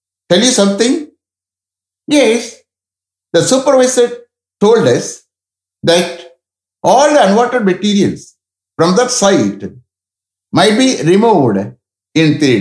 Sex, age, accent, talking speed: male, 60-79, Indian, 100 wpm